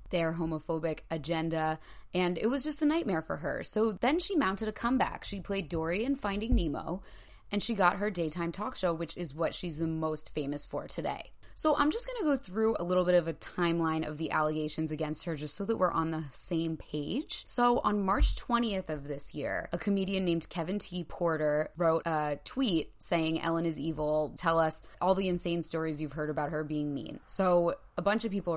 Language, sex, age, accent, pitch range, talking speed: English, female, 20-39, American, 155-190 Hz, 215 wpm